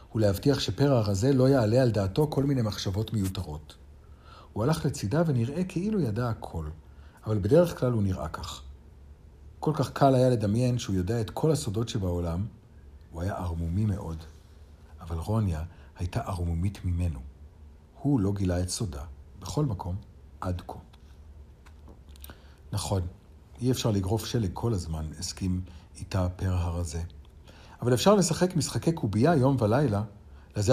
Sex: male